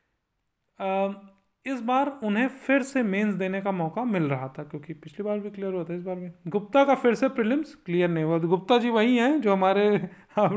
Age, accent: 30-49, native